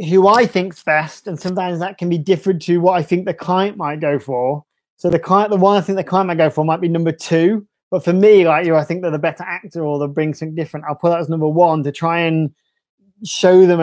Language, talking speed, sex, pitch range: English, 270 wpm, male, 155-185 Hz